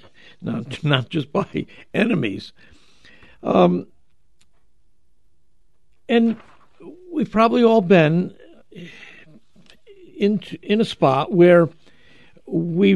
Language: English